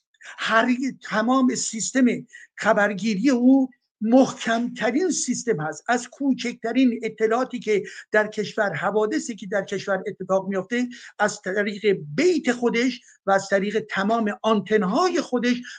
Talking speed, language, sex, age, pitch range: 120 wpm, Persian, male, 60-79, 200-245 Hz